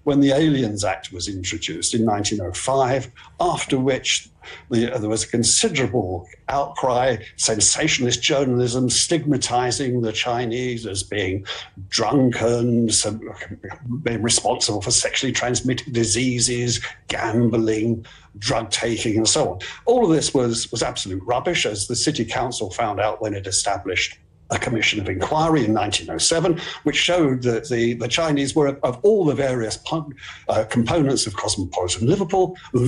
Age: 60-79